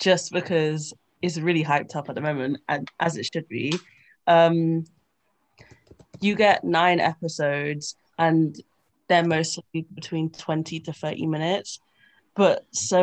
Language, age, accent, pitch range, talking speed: English, 20-39, British, 155-175 Hz, 135 wpm